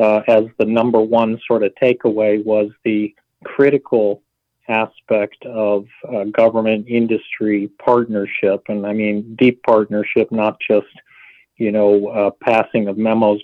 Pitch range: 105-115 Hz